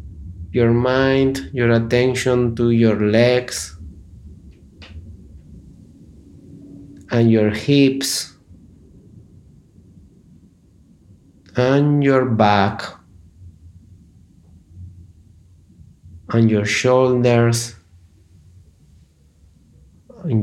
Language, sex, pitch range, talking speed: Slovak, male, 90-115 Hz, 50 wpm